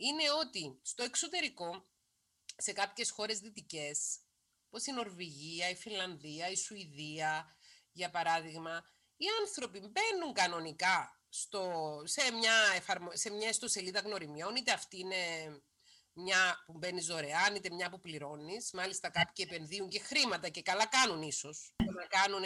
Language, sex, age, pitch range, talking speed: Greek, female, 30-49, 160-220 Hz, 130 wpm